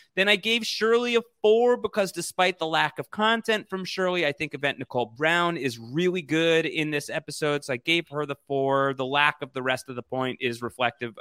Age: 30-49